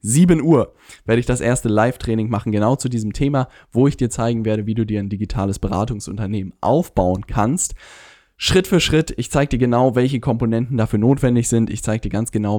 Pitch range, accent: 105-125 Hz, German